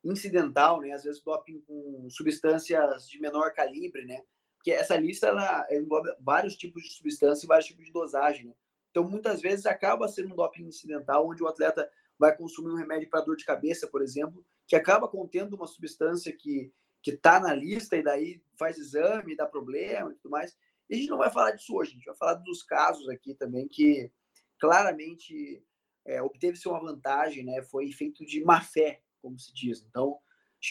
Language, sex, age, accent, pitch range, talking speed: Portuguese, male, 20-39, Brazilian, 140-180 Hz, 190 wpm